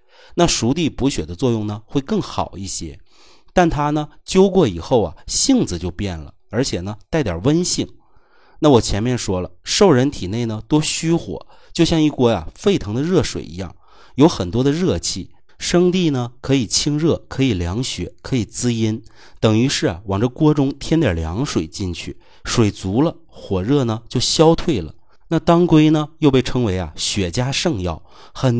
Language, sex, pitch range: Chinese, male, 95-150 Hz